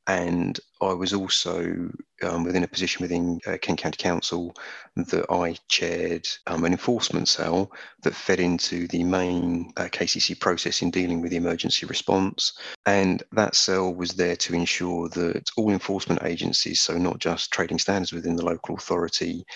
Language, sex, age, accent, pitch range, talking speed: English, male, 30-49, British, 85-95 Hz, 165 wpm